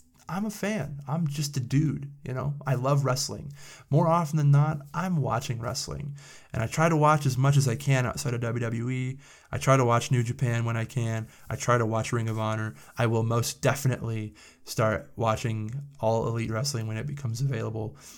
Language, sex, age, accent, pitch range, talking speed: English, male, 20-39, American, 110-135 Hz, 200 wpm